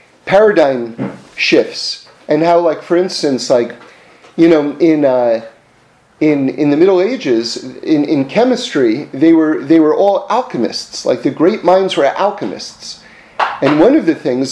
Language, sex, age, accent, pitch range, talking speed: English, male, 40-59, American, 140-205 Hz, 155 wpm